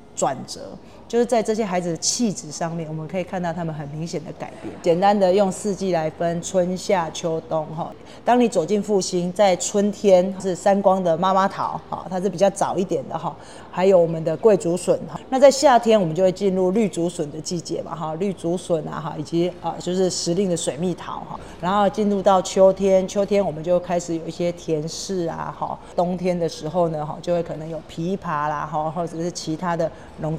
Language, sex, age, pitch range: Chinese, female, 30-49, 165-200 Hz